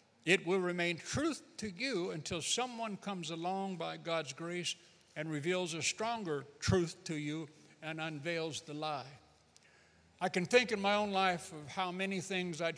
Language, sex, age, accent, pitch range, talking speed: English, male, 60-79, American, 145-180 Hz, 170 wpm